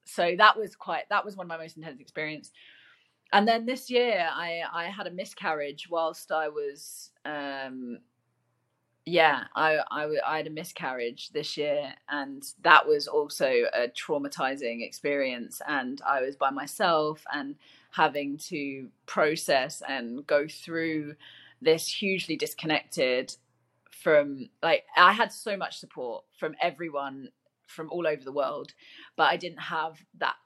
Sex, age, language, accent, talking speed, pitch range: female, 30-49, English, British, 150 wpm, 155-195 Hz